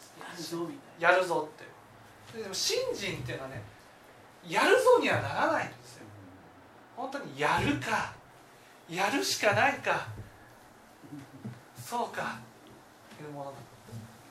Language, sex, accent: Japanese, male, native